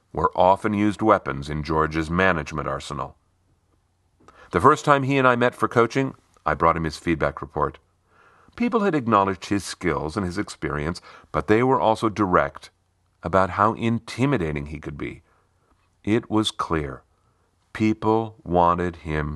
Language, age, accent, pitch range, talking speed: English, 40-59, American, 80-110 Hz, 150 wpm